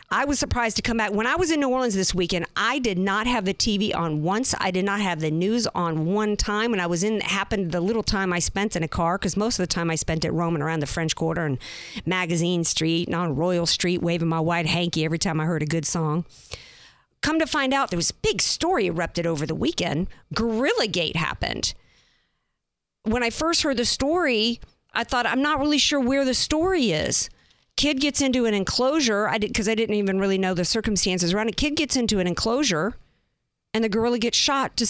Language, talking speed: English, 235 wpm